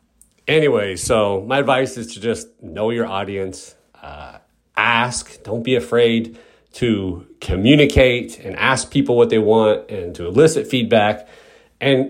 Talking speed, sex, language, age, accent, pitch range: 140 wpm, male, English, 40-59, American, 110-140 Hz